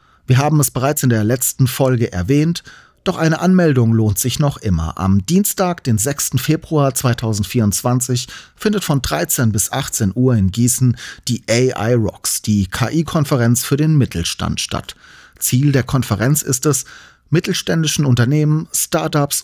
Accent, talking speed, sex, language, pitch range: German, 145 wpm, male, German, 110-145 Hz